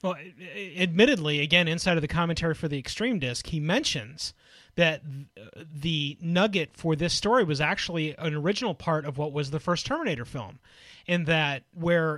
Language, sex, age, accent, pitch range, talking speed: English, male, 30-49, American, 145-180 Hz, 170 wpm